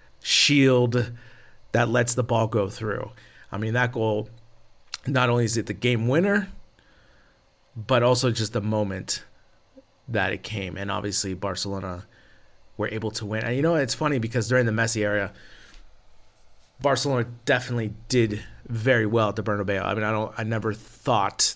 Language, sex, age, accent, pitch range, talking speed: English, male, 30-49, American, 100-115 Hz, 160 wpm